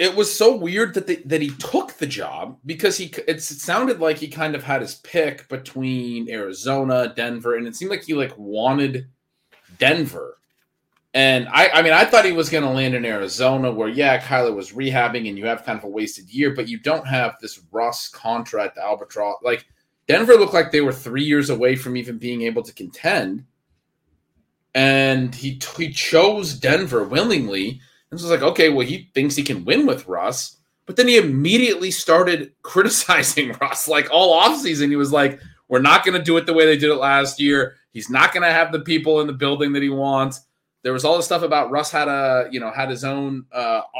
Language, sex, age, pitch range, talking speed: English, male, 30-49, 130-170 Hz, 215 wpm